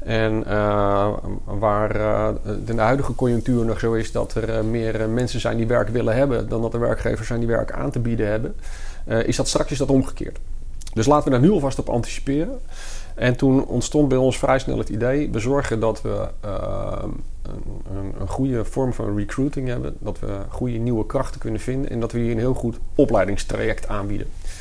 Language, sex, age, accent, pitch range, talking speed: Dutch, male, 40-59, Dutch, 105-120 Hz, 200 wpm